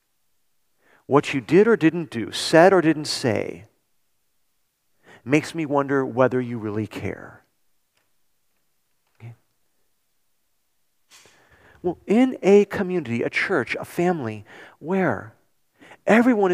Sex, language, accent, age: male, English, American, 50-69